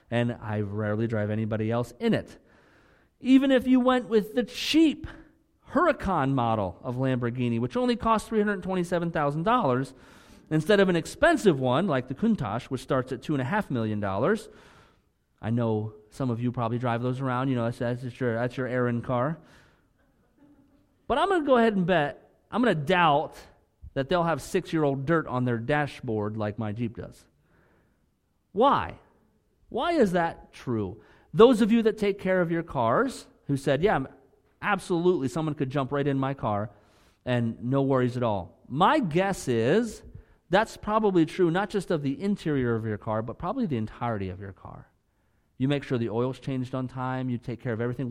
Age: 40-59